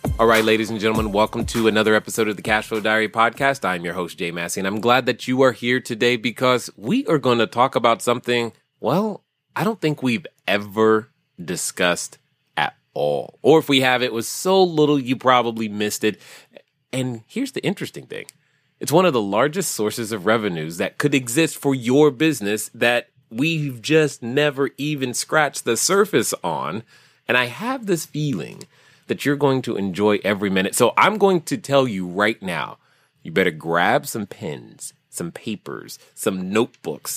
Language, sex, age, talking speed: English, male, 30-49, 180 wpm